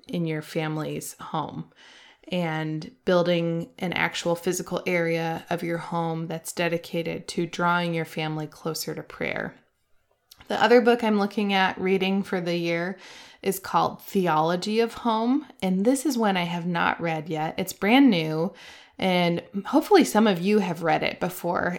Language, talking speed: English, 160 wpm